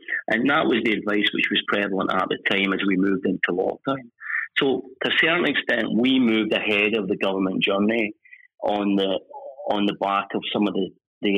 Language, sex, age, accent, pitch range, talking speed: English, male, 30-49, British, 95-120 Hz, 200 wpm